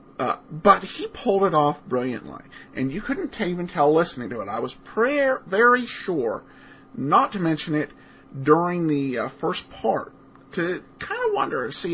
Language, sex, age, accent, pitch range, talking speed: English, male, 50-69, American, 145-210 Hz, 175 wpm